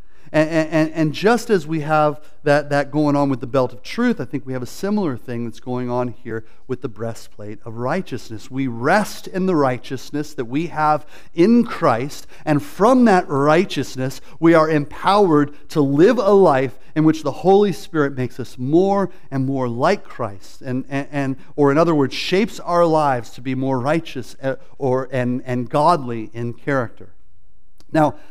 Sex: male